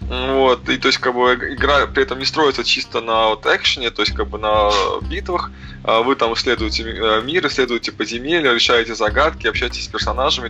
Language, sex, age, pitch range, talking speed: Russian, male, 20-39, 105-125 Hz, 185 wpm